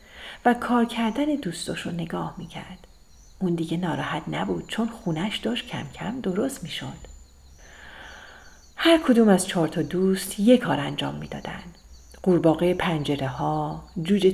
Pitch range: 165-230 Hz